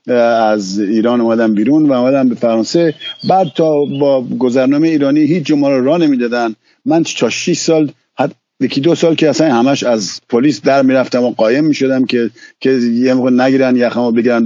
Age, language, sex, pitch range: 50-69, Persian, male, 115-155 Hz